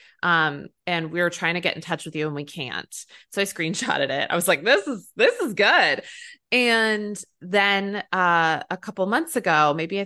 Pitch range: 170-215 Hz